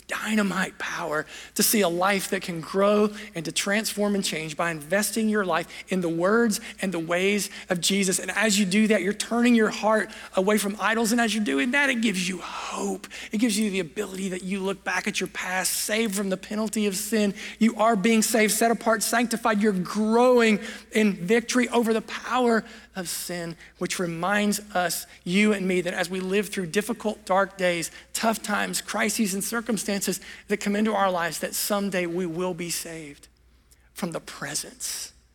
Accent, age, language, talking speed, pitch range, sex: American, 40-59, English, 195 wpm, 170-215 Hz, male